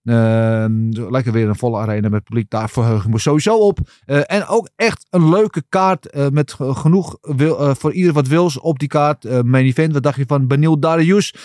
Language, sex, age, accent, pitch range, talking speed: Dutch, male, 40-59, Dutch, 120-160 Hz, 210 wpm